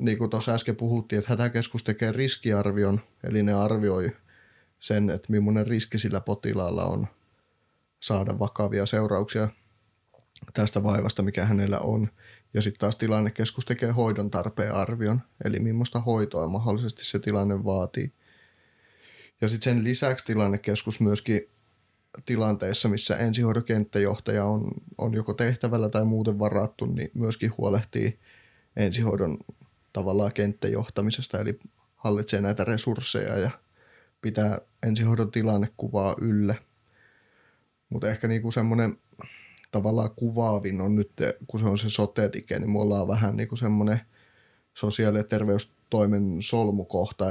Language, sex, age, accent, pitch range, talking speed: Finnish, male, 30-49, native, 100-115 Hz, 120 wpm